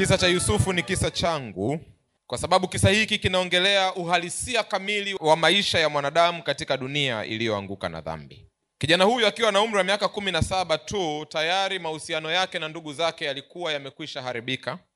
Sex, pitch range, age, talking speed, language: male, 145-235 Hz, 30-49, 155 wpm, Swahili